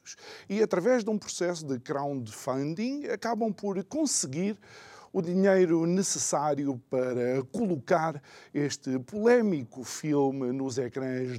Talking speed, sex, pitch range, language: 105 wpm, male, 130-195 Hz, Portuguese